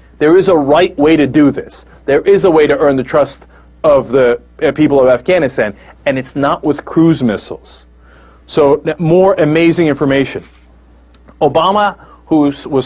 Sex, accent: male, American